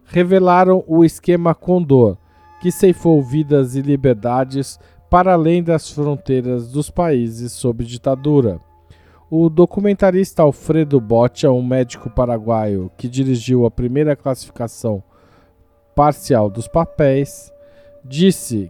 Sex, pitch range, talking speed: male, 120-150 Hz, 105 wpm